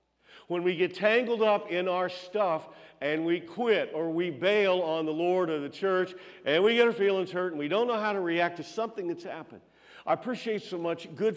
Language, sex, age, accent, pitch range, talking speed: English, male, 50-69, American, 145-185 Hz, 220 wpm